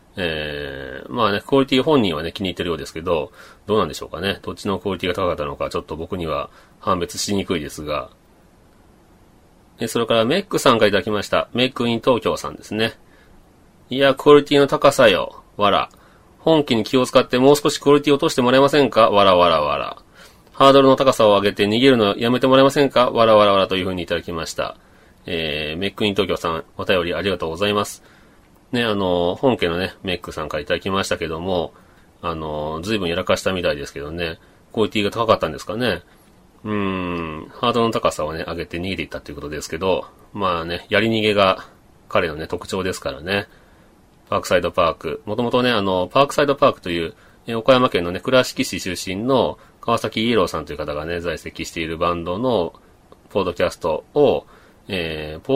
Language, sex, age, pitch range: Japanese, male, 30-49, 90-130 Hz